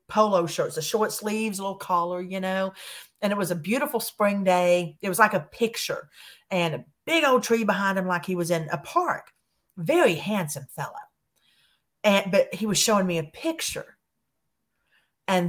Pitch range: 160-200 Hz